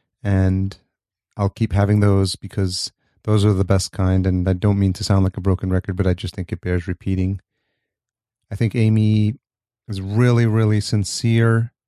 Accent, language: American, English